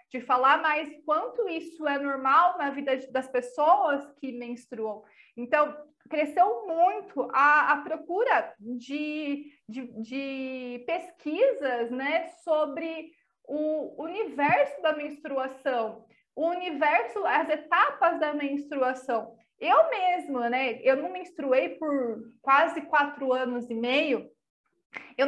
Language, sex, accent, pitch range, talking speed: Portuguese, female, Brazilian, 250-320 Hz, 115 wpm